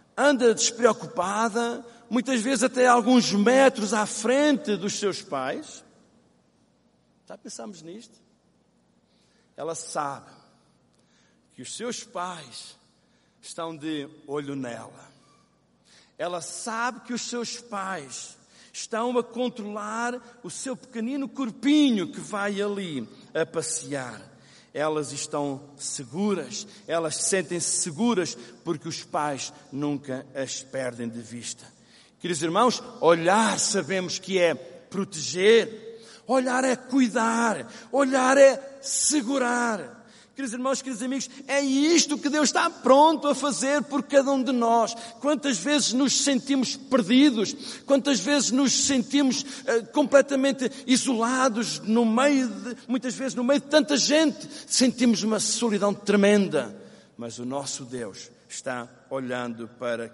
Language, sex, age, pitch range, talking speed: Portuguese, male, 50-69, 170-260 Hz, 120 wpm